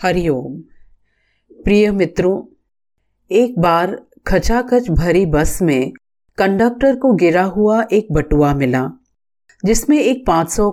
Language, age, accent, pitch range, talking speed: Hindi, 50-69, native, 155-225 Hz, 110 wpm